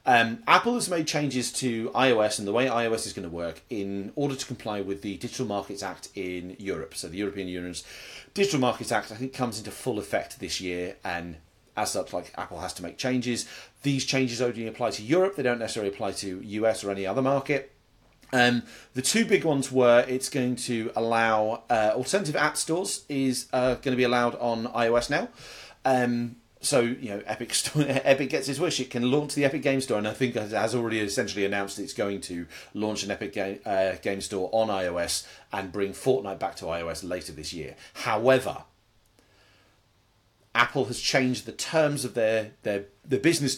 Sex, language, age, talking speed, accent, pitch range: male, English, 30-49, 195 wpm, British, 100-130 Hz